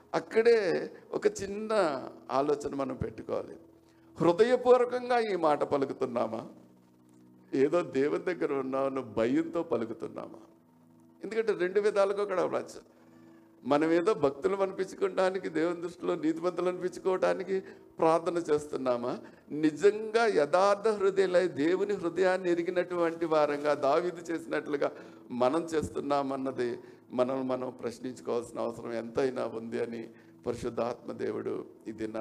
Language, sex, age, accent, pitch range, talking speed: Telugu, male, 60-79, native, 115-185 Hz, 95 wpm